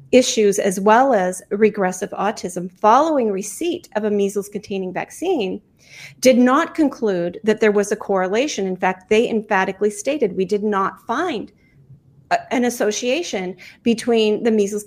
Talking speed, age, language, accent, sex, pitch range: 140 wpm, 40-59, English, American, female, 195-250 Hz